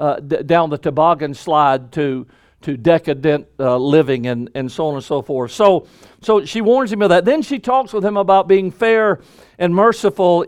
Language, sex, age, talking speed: English, male, 50-69, 200 wpm